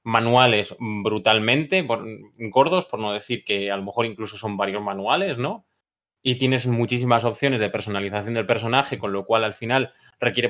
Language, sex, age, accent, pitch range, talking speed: Spanish, male, 20-39, Spanish, 105-130 Hz, 170 wpm